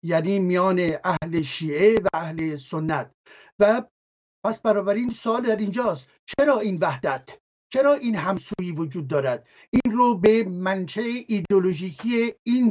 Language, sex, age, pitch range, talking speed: English, male, 60-79, 190-240 Hz, 130 wpm